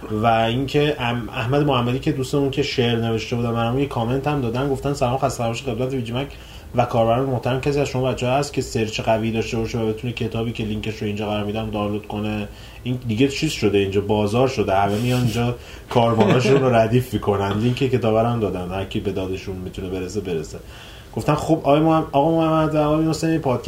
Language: Persian